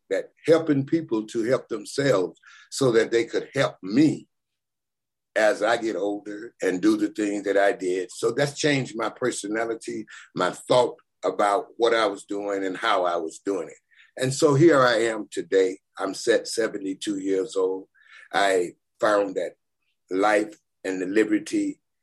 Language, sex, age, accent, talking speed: English, male, 60-79, American, 160 wpm